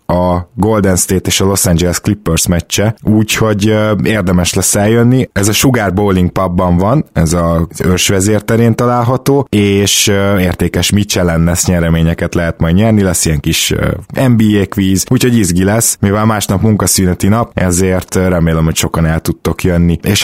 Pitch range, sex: 90-105 Hz, male